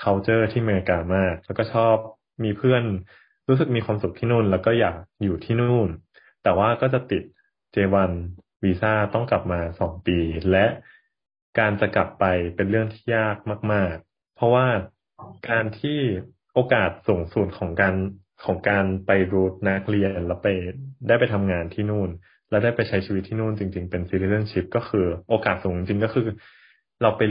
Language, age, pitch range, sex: Thai, 20-39, 95-115 Hz, male